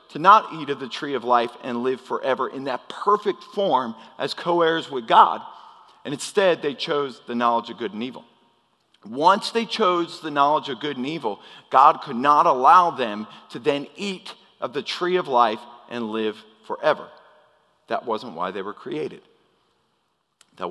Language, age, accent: English, 40-59, American